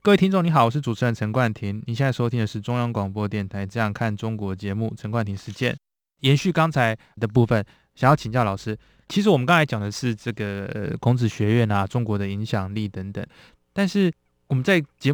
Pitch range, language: 105-135 Hz, Chinese